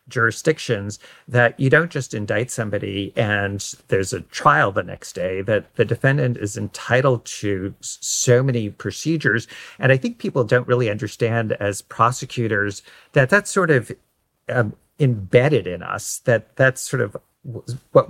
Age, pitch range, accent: 40-59, 105-130 Hz, American